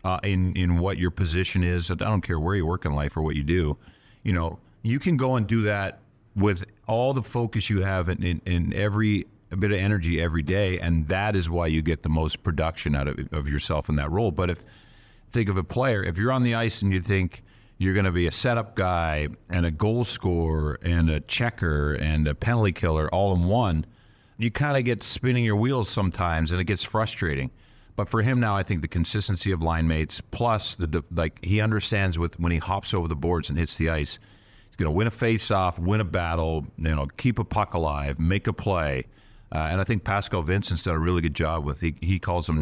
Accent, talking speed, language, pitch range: American, 235 wpm, English, 80-105 Hz